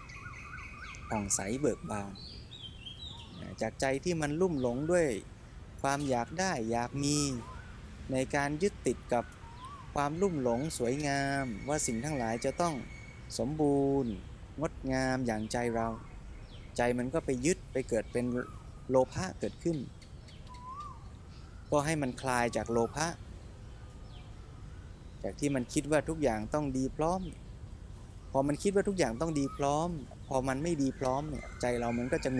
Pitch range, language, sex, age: 115-145 Hz, Thai, male, 20-39